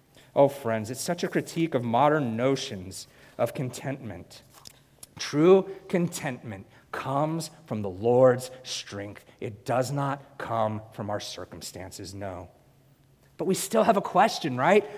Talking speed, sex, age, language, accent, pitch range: 130 wpm, male, 40-59, English, American, 110-145 Hz